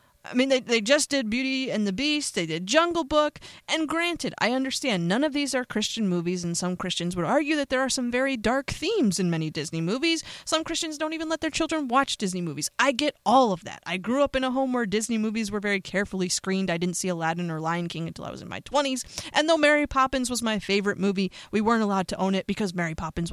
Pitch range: 200-285 Hz